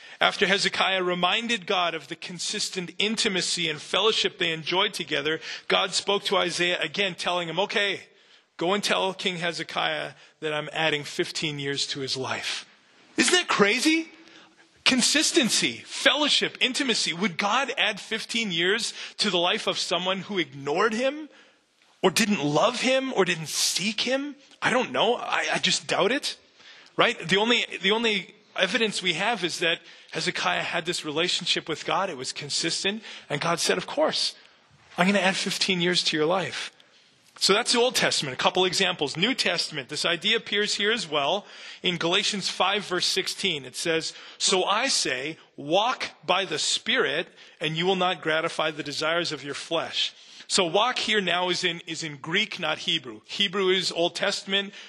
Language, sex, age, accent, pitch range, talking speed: English, male, 30-49, American, 165-210 Hz, 170 wpm